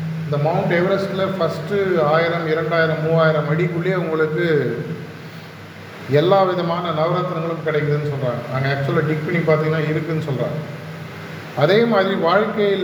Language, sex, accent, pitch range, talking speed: Tamil, male, native, 150-175 Hz, 110 wpm